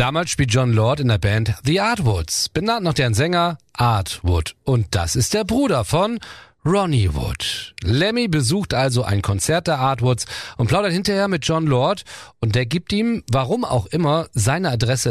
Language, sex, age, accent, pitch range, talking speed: German, male, 40-59, German, 110-160 Hz, 175 wpm